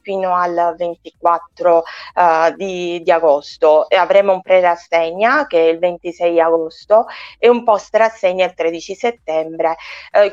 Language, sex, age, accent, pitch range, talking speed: Italian, female, 20-39, native, 170-195 Hz, 145 wpm